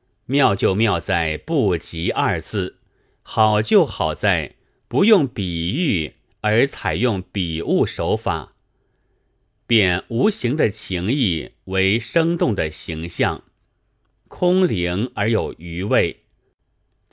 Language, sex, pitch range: Chinese, male, 90-120 Hz